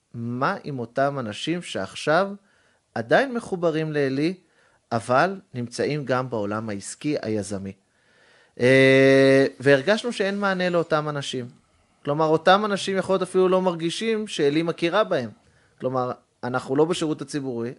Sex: male